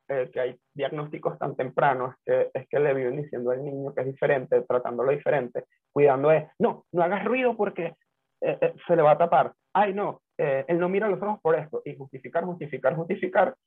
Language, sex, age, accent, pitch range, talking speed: Spanish, male, 30-49, Venezuelan, 135-180 Hz, 205 wpm